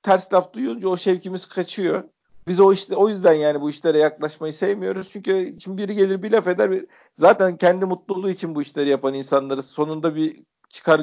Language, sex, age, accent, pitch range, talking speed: Turkish, male, 50-69, native, 135-190 Hz, 185 wpm